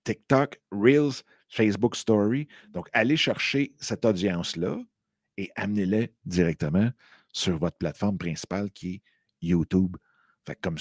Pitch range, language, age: 95-125 Hz, French, 50-69